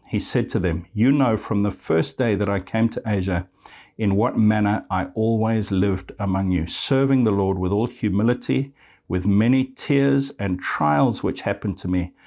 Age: 60-79